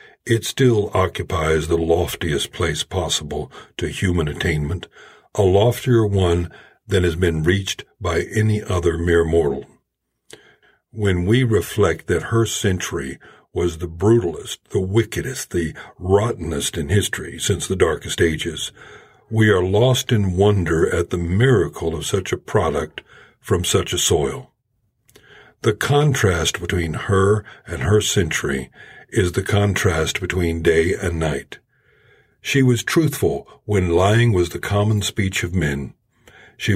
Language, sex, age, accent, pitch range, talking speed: English, male, 60-79, American, 90-110 Hz, 135 wpm